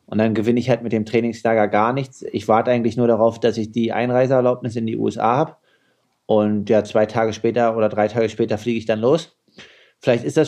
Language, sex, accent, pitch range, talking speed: German, male, German, 110-125 Hz, 225 wpm